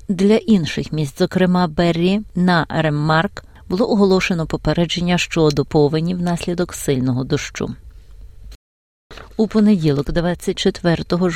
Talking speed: 95 wpm